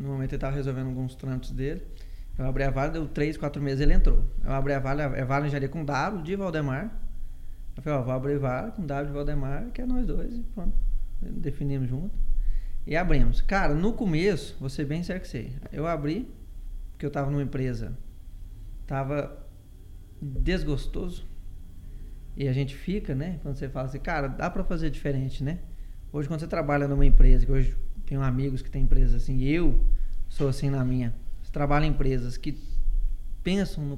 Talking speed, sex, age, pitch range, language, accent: 190 wpm, male, 20-39, 130-180 Hz, Portuguese, Brazilian